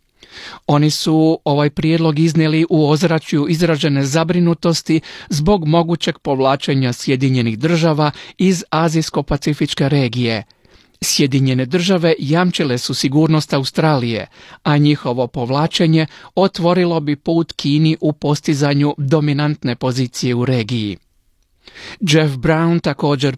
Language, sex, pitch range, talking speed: Croatian, male, 135-165 Hz, 100 wpm